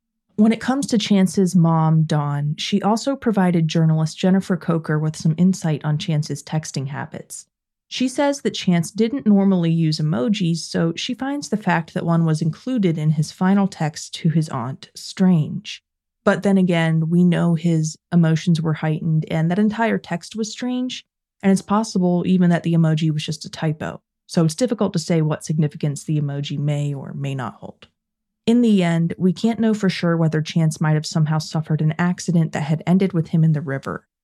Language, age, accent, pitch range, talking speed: English, 20-39, American, 155-195 Hz, 190 wpm